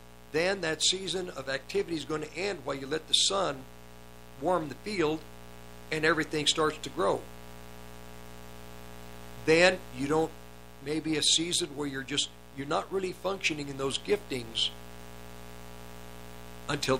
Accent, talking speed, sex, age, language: American, 140 wpm, male, 50-69, English